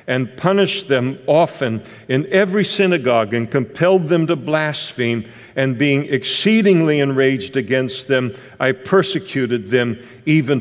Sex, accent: male, American